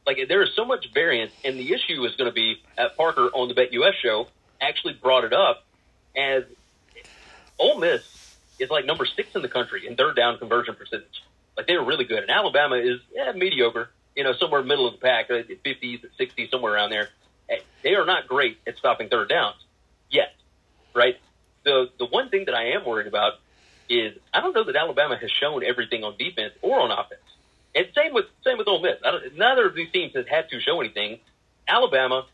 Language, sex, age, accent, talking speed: English, male, 30-49, American, 195 wpm